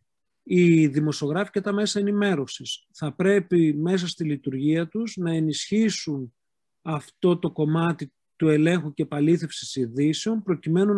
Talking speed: 125 wpm